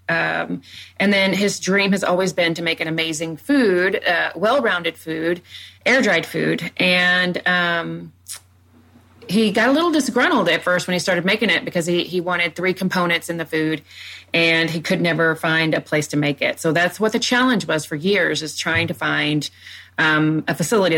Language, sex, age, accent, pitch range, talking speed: English, female, 30-49, American, 155-185 Hz, 190 wpm